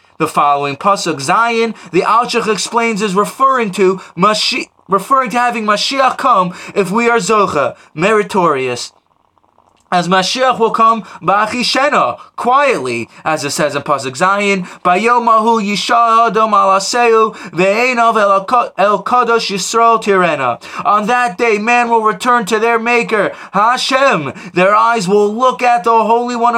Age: 20-39